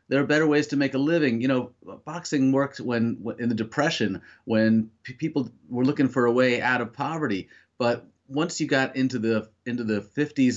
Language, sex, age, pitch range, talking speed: English, male, 30-49, 115-135 Hz, 205 wpm